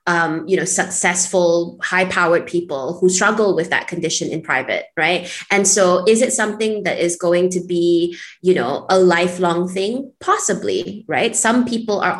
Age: 20-39